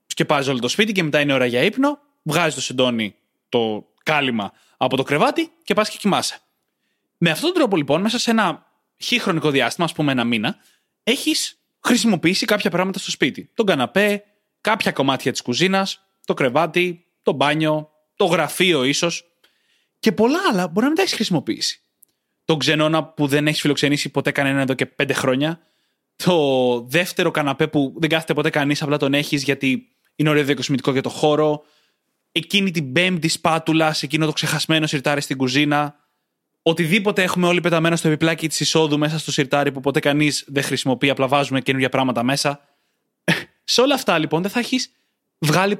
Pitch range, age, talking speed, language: 140-190 Hz, 20-39, 175 wpm, Greek